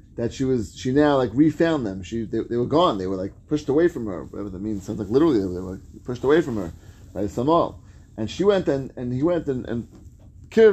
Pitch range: 100-140 Hz